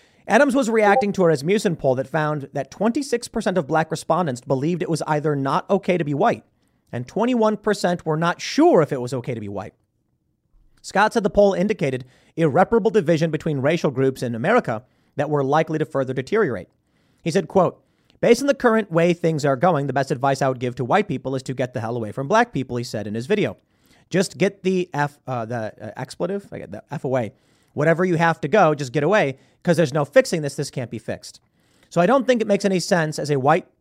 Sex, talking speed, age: male, 225 wpm, 30-49